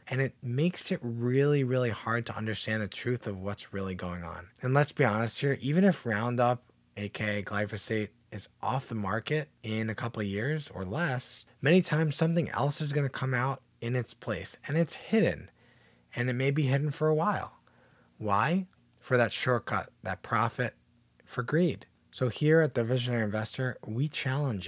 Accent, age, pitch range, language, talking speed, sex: American, 20-39, 110-140 Hz, English, 185 wpm, male